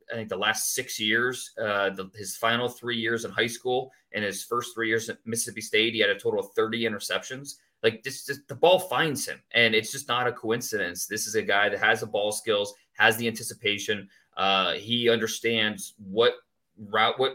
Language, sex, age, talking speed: English, male, 30-49, 205 wpm